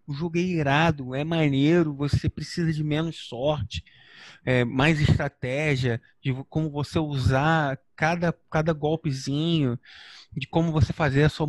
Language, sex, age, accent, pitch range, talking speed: Portuguese, male, 20-39, Brazilian, 130-160 Hz, 135 wpm